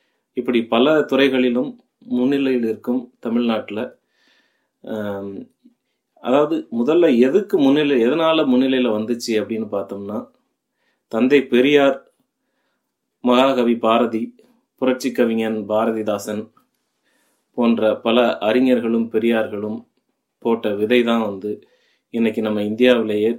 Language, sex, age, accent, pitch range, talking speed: Tamil, male, 30-49, native, 110-130 Hz, 85 wpm